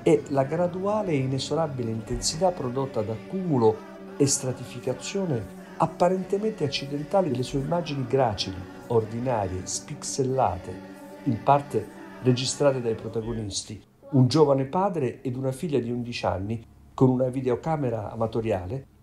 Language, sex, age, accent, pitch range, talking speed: Italian, male, 50-69, native, 110-145 Hz, 115 wpm